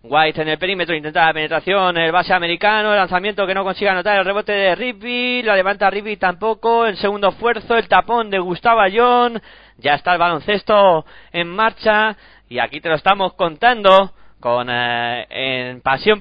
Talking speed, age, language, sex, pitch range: 180 wpm, 20-39, Spanish, male, 150-200 Hz